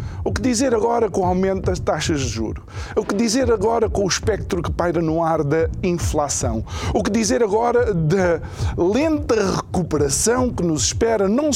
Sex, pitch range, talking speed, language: male, 125-195 Hz, 180 wpm, Portuguese